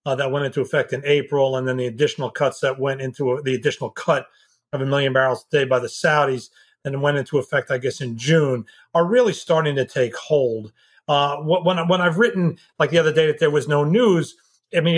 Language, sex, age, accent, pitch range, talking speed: English, male, 40-59, American, 135-165 Hz, 240 wpm